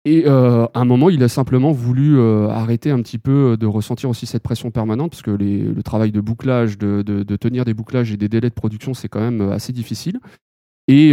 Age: 30-49